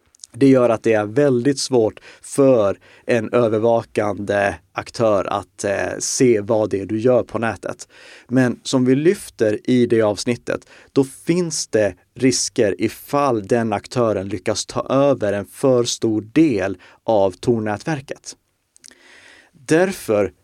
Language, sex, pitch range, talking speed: Swedish, male, 105-135 Hz, 130 wpm